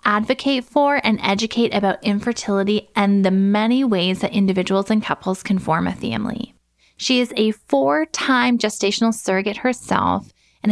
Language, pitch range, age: English, 195-235 Hz, 10-29